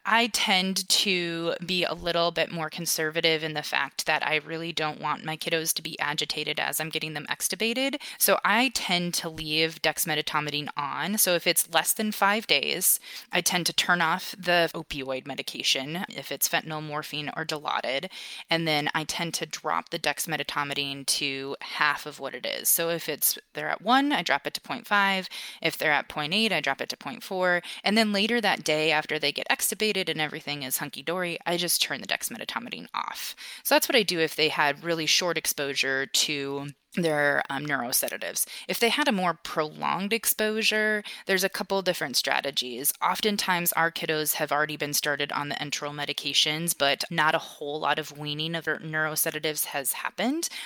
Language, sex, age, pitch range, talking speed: English, female, 20-39, 150-180 Hz, 185 wpm